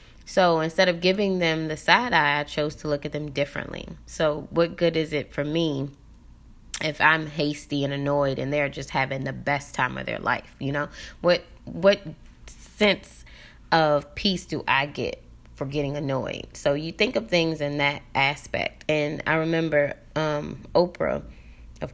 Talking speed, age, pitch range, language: 175 wpm, 20-39, 140-160 Hz, English